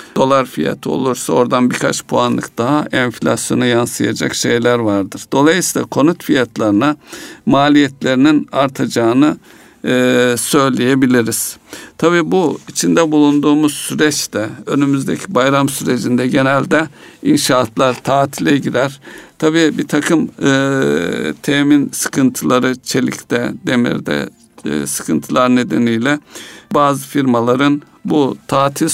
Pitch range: 125-145 Hz